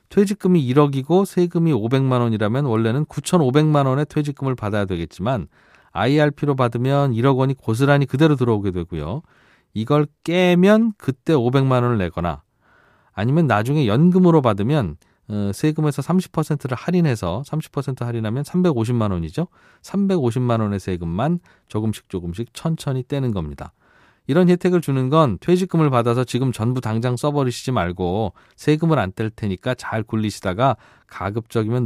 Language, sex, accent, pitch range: Korean, male, native, 110-150 Hz